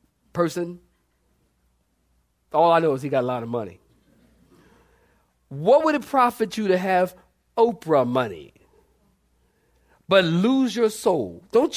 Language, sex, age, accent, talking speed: English, male, 40-59, American, 125 wpm